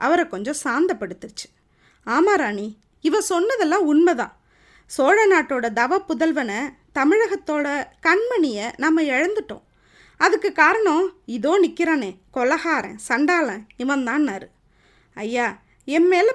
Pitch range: 250-370 Hz